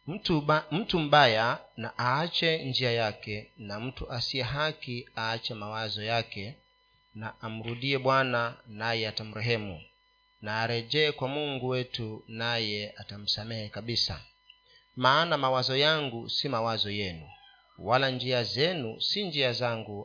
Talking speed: 125 wpm